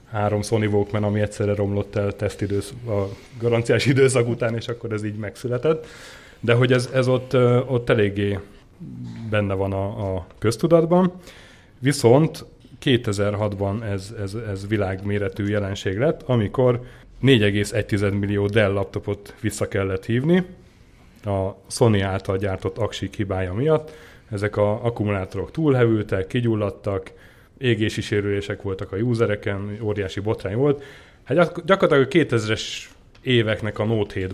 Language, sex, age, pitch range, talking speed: Hungarian, male, 30-49, 100-125 Hz, 130 wpm